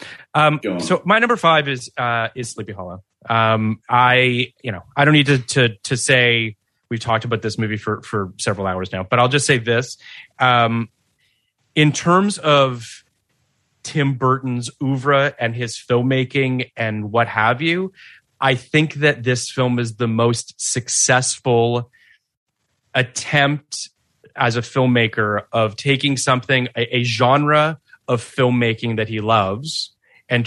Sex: male